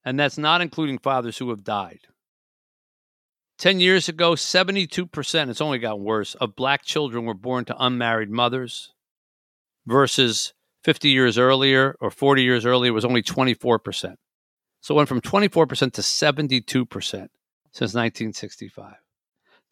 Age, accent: 50-69, American